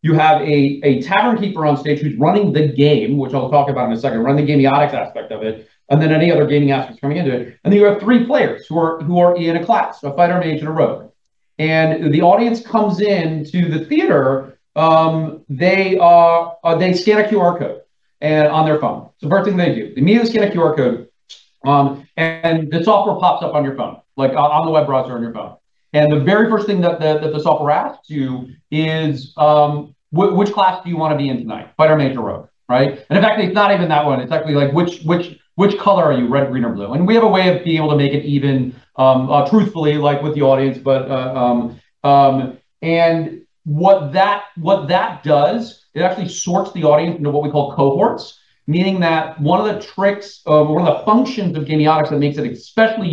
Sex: male